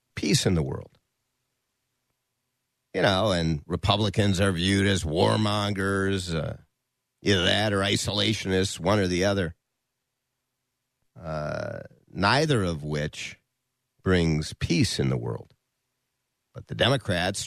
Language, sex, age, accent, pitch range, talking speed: English, male, 50-69, American, 90-125 Hz, 115 wpm